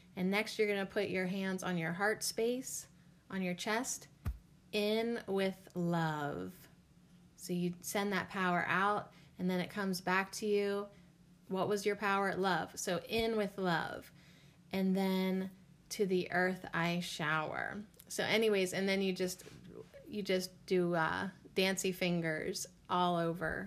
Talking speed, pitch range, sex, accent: 150 wpm, 170-205 Hz, female, American